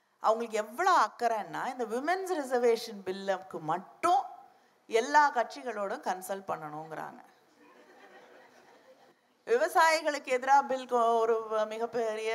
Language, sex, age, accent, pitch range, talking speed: Tamil, female, 50-69, native, 190-250 Hz, 65 wpm